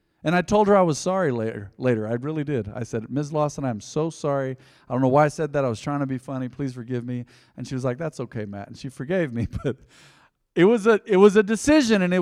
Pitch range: 125-165 Hz